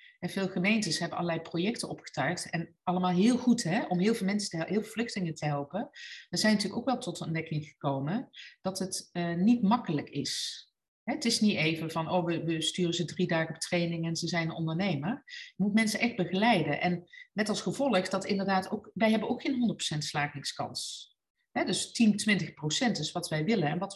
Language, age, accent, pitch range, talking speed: Dutch, 40-59, Dutch, 170-215 Hz, 215 wpm